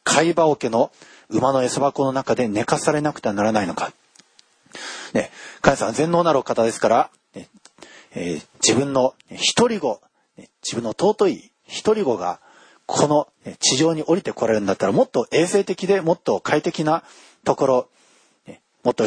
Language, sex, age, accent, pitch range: Japanese, male, 40-59, native, 135-170 Hz